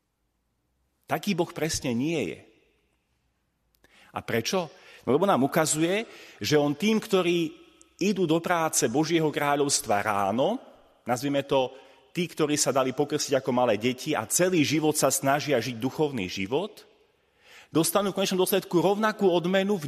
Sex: male